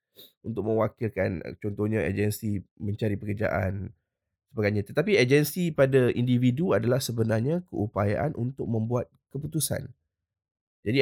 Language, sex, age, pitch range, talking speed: Malay, male, 20-39, 100-125 Hz, 100 wpm